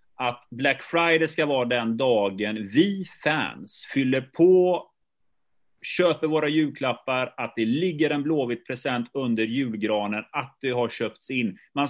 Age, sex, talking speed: 30-49, male, 140 wpm